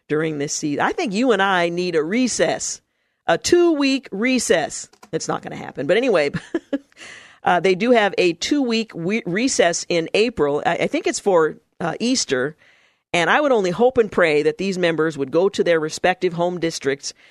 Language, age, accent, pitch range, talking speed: English, 50-69, American, 155-210 Hz, 200 wpm